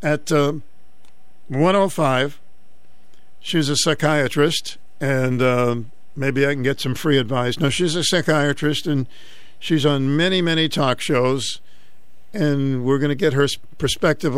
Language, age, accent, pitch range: English, 50-69, American, 130-160 Hz